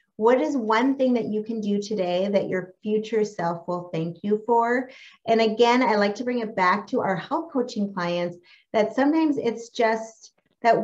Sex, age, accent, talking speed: female, 30-49, American, 195 wpm